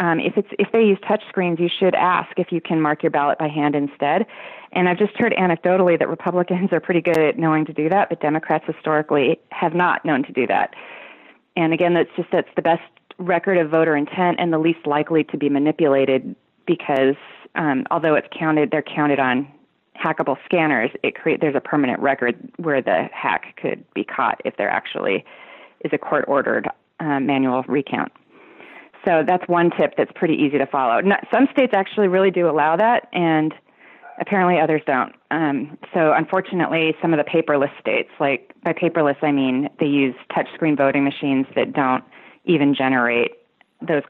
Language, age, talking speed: English, 30-49, 185 wpm